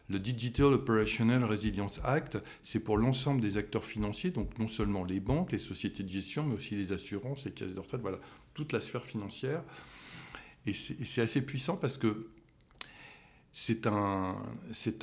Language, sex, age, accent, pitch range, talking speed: French, male, 50-69, French, 105-135 Hz, 160 wpm